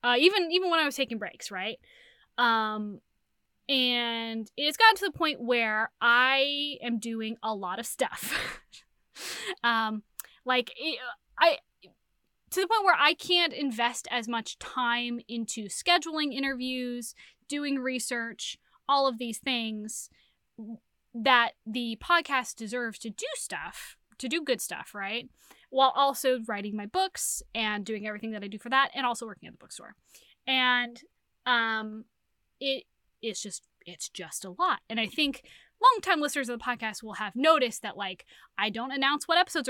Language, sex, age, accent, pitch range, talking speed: English, female, 20-39, American, 225-305 Hz, 155 wpm